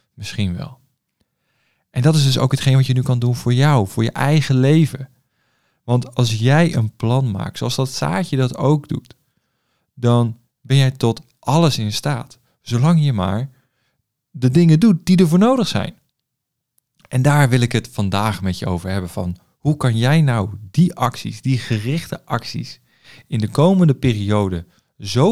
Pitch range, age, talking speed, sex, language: 115-145 Hz, 40-59, 175 wpm, male, Dutch